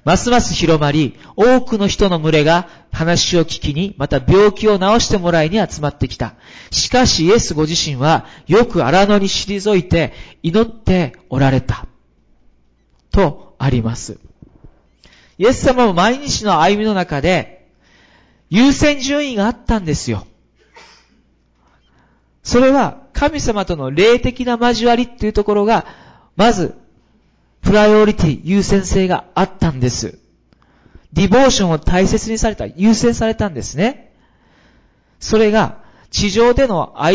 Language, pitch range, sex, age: Japanese, 140-215 Hz, male, 40-59